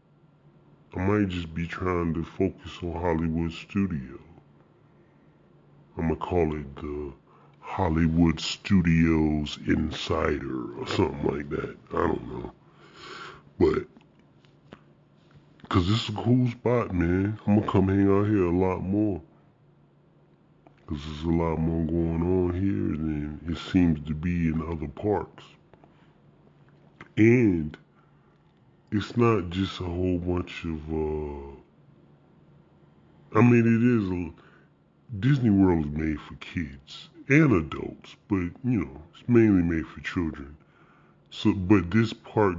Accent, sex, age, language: American, female, 10-29, English